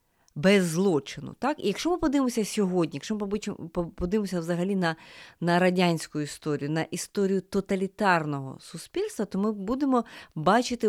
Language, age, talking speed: Ukrainian, 30-49, 130 wpm